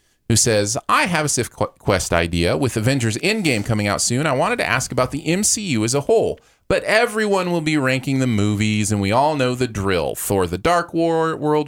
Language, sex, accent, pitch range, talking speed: English, male, American, 100-150 Hz, 215 wpm